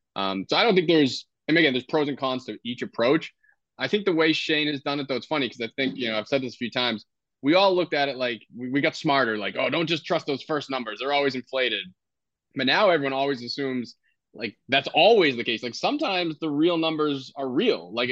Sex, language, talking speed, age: male, English, 260 wpm, 20-39